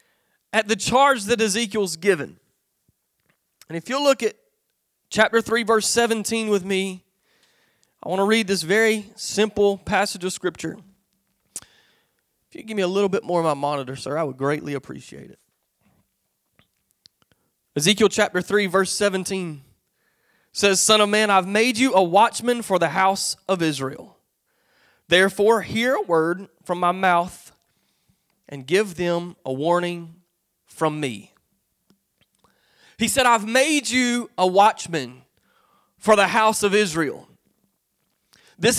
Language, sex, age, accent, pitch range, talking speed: English, male, 30-49, American, 185-230 Hz, 140 wpm